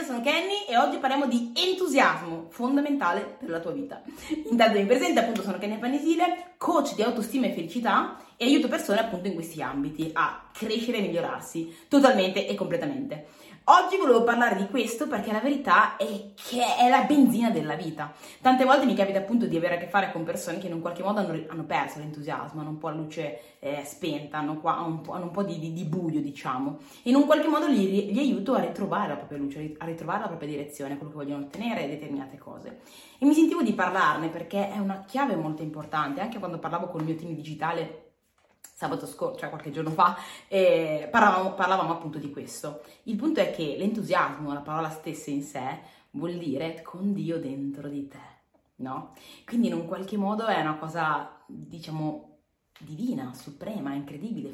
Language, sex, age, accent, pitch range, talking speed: Italian, female, 20-39, native, 160-240 Hz, 195 wpm